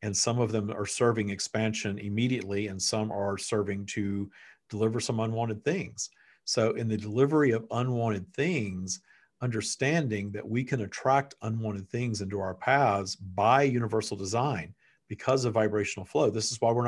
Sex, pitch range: male, 105-125 Hz